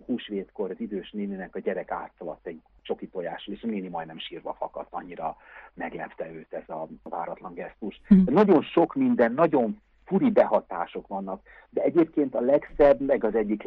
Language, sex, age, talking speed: Hungarian, male, 60-79, 165 wpm